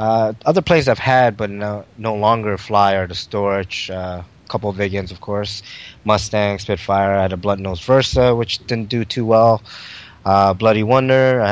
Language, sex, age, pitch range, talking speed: English, male, 20-39, 95-115 Hz, 195 wpm